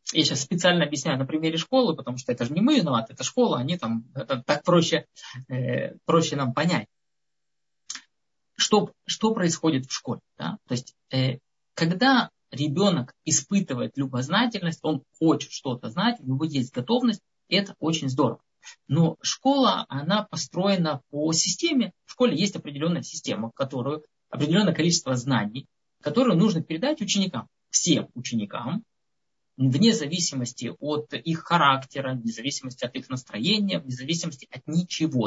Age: 20-39